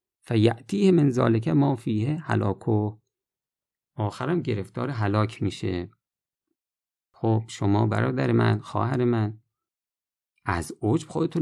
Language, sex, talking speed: Persian, male, 95 wpm